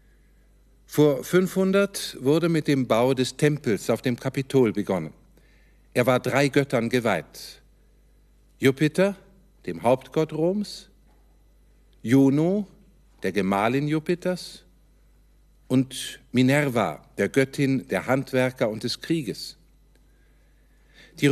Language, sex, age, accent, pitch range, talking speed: German, male, 50-69, German, 120-150 Hz, 100 wpm